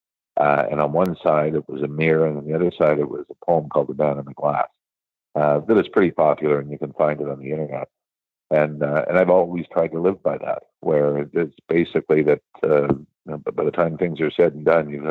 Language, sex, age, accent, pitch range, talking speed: English, male, 50-69, American, 70-80 Hz, 255 wpm